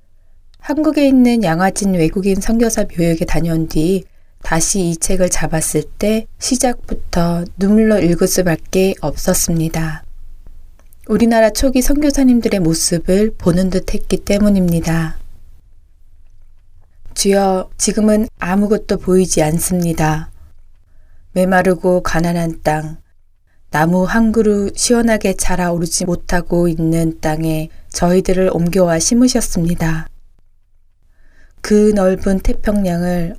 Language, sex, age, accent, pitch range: Korean, female, 20-39, native, 155-200 Hz